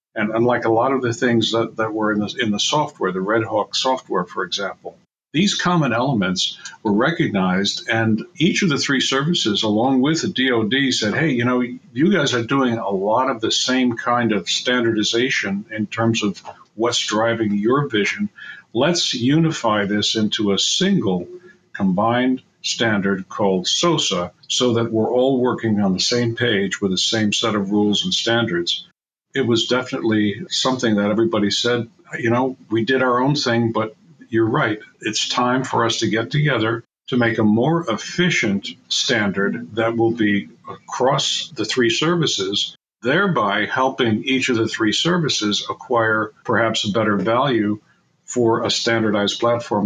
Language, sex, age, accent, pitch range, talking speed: English, male, 60-79, American, 105-130 Hz, 165 wpm